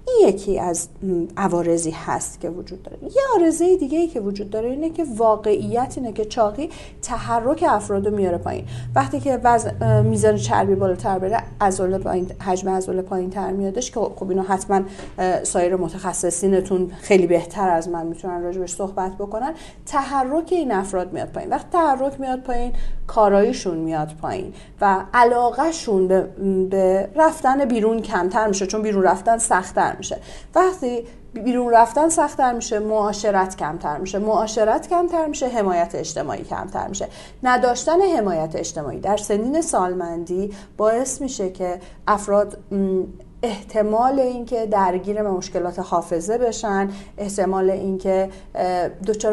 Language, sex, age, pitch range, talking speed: Persian, female, 40-59, 185-240 Hz, 135 wpm